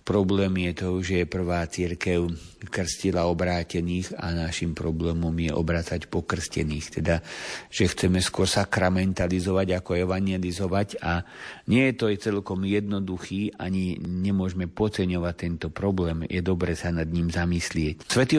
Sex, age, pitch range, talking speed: male, 50-69, 90-100 Hz, 130 wpm